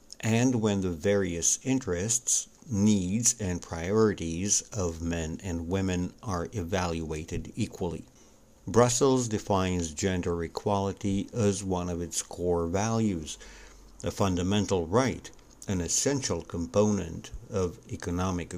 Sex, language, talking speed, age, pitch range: male, English, 105 wpm, 60-79, 85-110 Hz